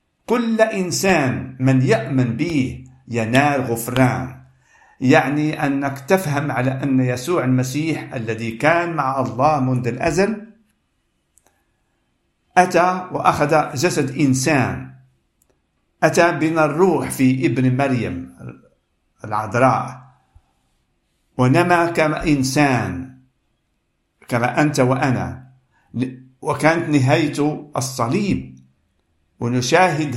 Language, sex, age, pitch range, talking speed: Arabic, male, 50-69, 110-155 Hz, 80 wpm